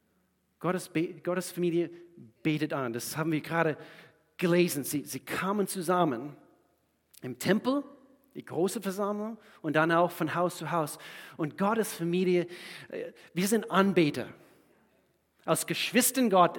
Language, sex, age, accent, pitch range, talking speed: German, male, 40-59, German, 135-180 Hz, 125 wpm